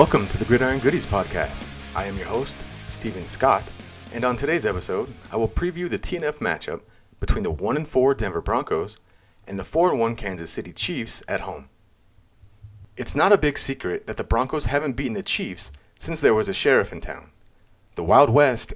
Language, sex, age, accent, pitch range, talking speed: English, male, 30-49, American, 95-135 Hz, 180 wpm